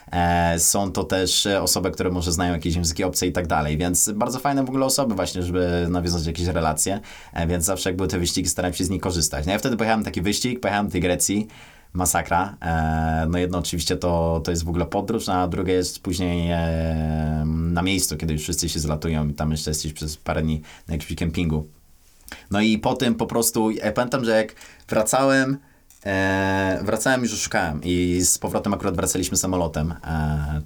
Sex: male